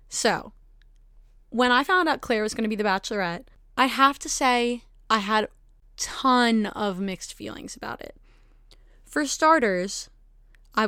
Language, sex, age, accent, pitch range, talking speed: English, female, 20-39, American, 195-245 Hz, 155 wpm